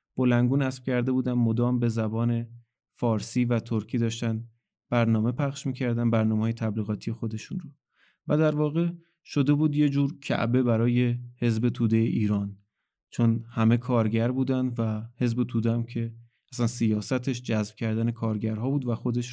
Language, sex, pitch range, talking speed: Persian, male, 115-130 Hz, 145 wpm